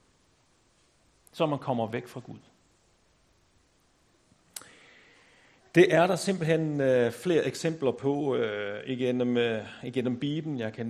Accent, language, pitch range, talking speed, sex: native, Danish, 120-150 Hz, 110 wpm, male